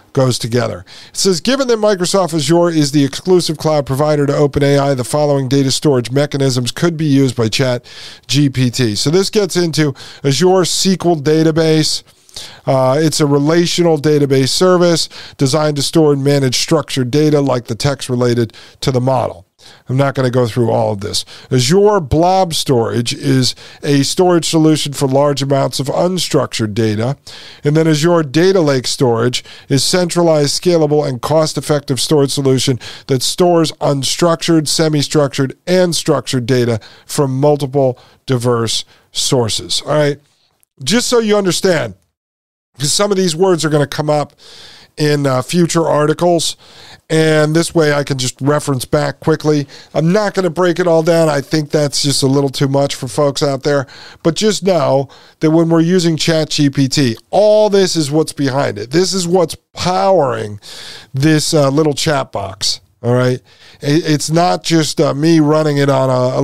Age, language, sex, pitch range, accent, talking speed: 50-69, English, male, 130-165 Hz, American, 165 wpm